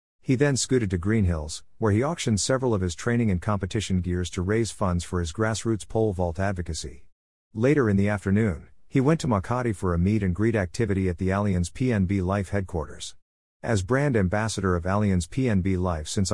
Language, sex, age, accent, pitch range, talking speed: English, male, 50-69, American, 90-115 Hz, 185 wpm